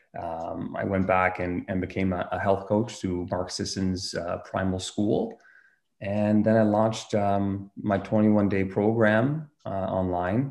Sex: male